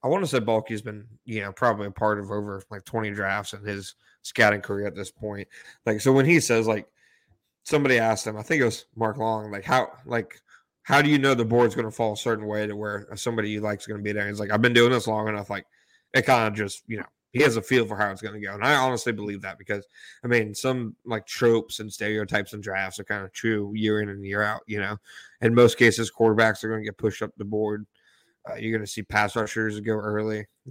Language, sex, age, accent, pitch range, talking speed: English, male, 20-39, American, 105-115 Hz, 270 wpm